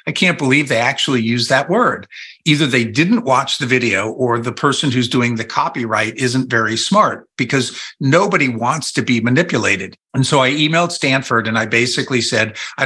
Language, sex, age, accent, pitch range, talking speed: English, male, 50-69, American, 120-150 Hz, 185 wpm